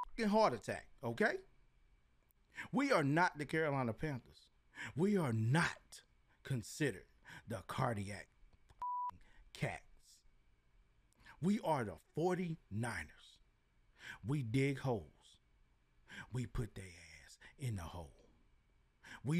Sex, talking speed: male, 100 wpm